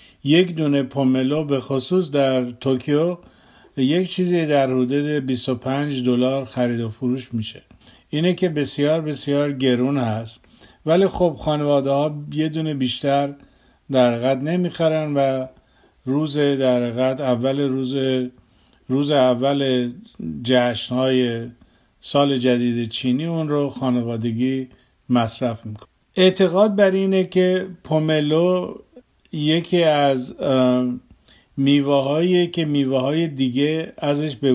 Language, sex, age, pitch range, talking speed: Persian, male, 50-69, 130-155 Hz, 110 wpm